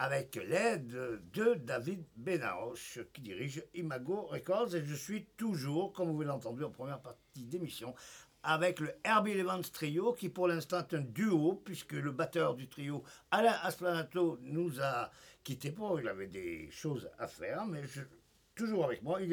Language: French